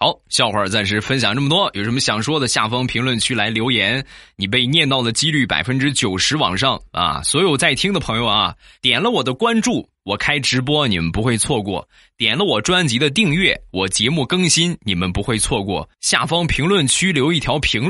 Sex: male